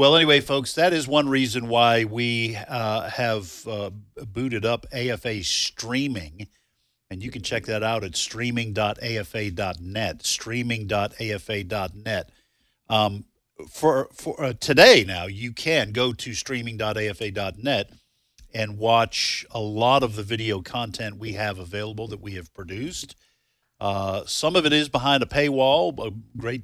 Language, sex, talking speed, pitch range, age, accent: English, male, 140 wpm, 100-120 Hz, 50-69, American